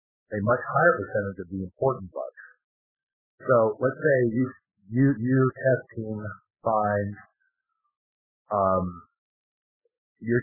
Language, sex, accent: English, male, American